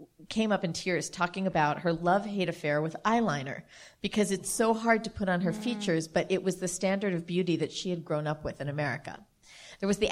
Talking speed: 225 wpm